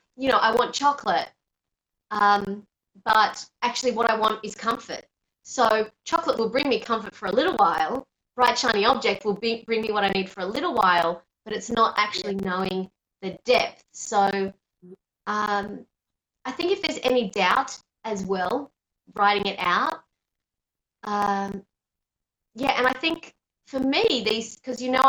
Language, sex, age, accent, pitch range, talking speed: English, female, 20-39, Australian, 200-260 Hz, 160 wpm